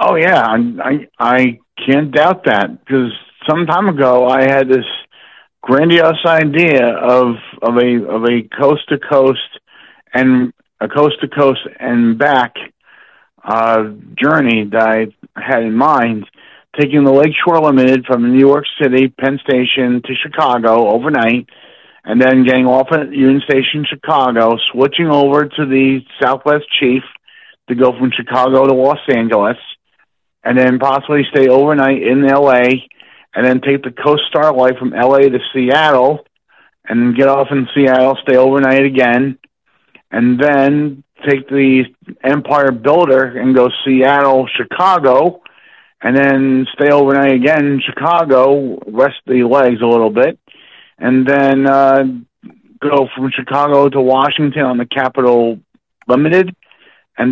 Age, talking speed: 50-69, 140 wpm